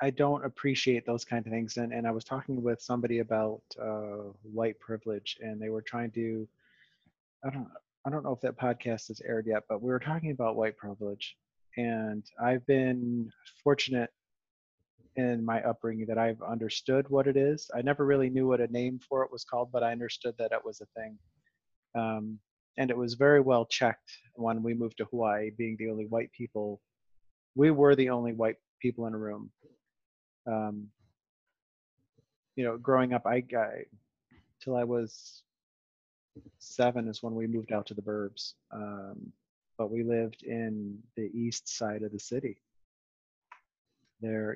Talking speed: 175 wpm